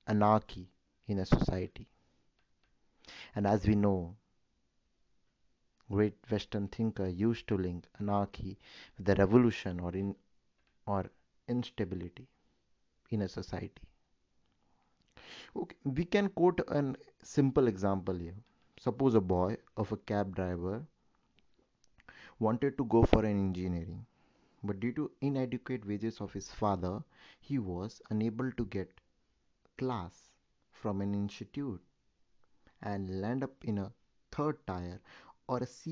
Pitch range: 95-125 Hz